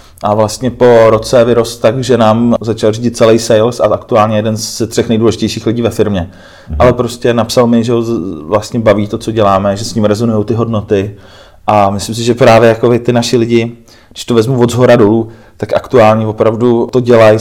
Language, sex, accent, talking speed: Czech, male, native, 200 wpm